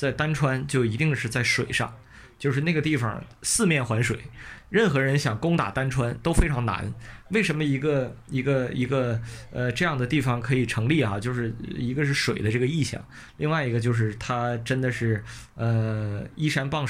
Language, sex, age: Chinese, male, 20-39